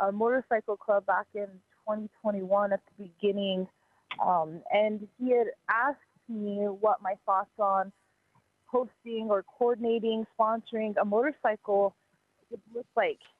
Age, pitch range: 20-39, 200-230 Hz